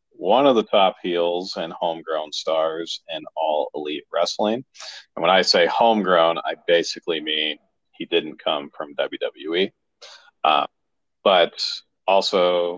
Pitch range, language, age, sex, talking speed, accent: 85-115 Hz, English, 40-59, male, 130 wpm, American